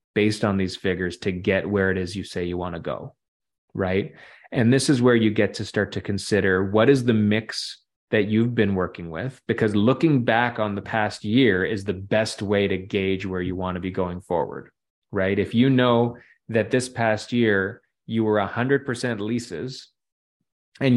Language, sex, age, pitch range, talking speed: English, male, 20-39, 95-115 Hz, 195 wpm